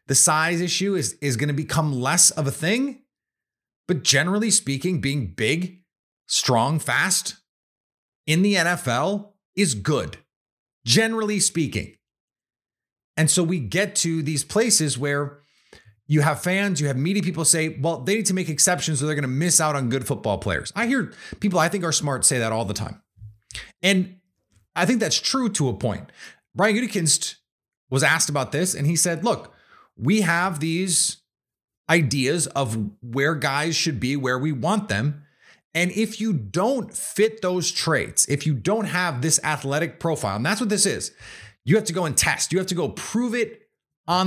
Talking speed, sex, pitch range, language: 180 wpm, male, 135-185 Hz, English